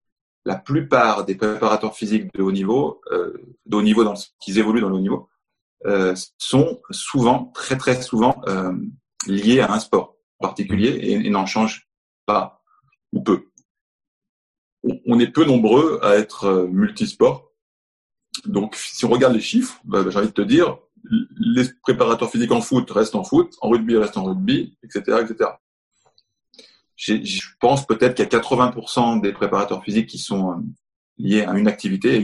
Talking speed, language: 170 wpm, French